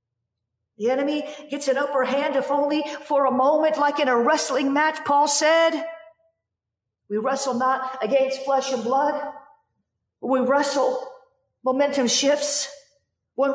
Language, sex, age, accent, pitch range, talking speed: English, female, 50-69, American, 255-295 Hz, 135 wpm